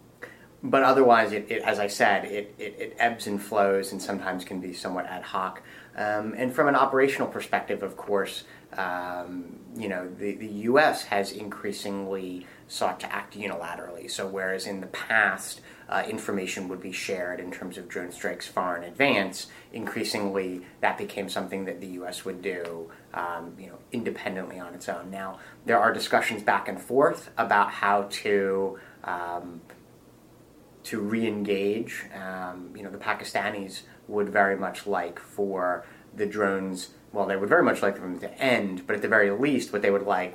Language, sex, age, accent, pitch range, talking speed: English, male, 30-49, American, 90-100 Hz, 175 wpm